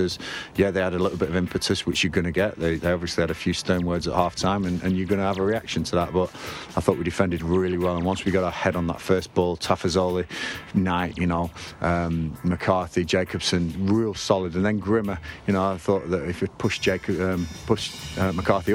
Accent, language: British, English